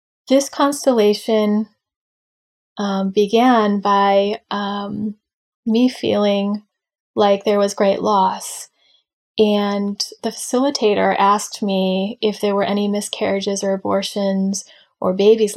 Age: 20-39